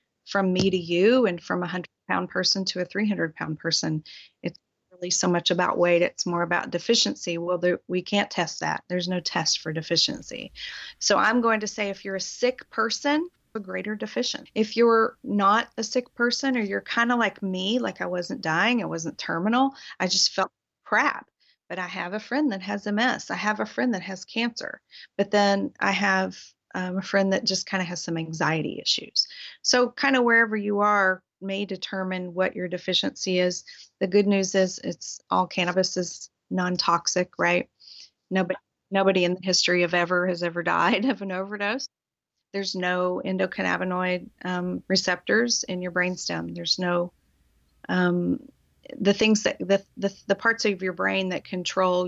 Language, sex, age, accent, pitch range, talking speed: English, female, 30-49, American, 175-210 Hz, 185 wpm